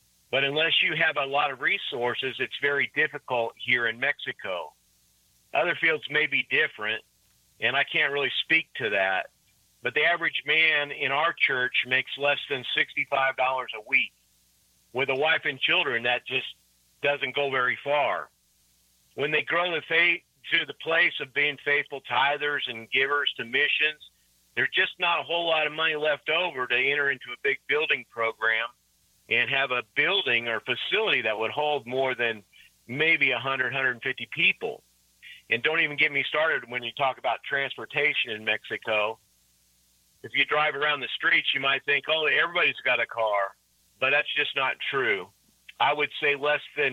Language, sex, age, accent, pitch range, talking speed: English, male, 50-69, American, 115-145 Hz, 170 wpm